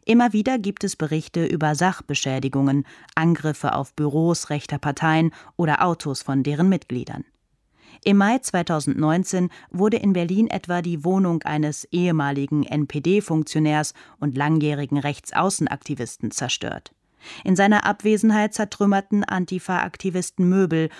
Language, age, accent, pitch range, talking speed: German, 30-49, German, 145-185 Hz, 110 wpm